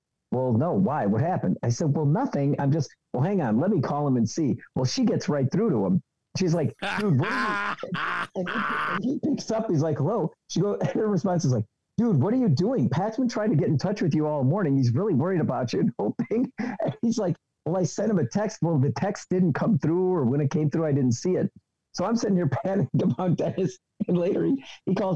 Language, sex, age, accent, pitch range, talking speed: English, male, 50-69, American, 135-185 Hz, 255 wpm